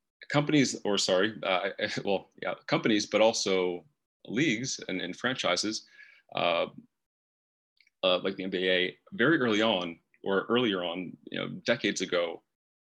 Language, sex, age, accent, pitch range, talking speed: English, male, 30-49, American, 95-120 Hz, 130 wpm